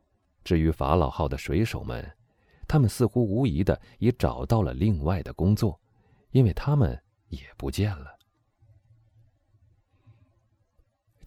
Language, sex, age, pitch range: Chinese, male, 30-49, 80-110 Hz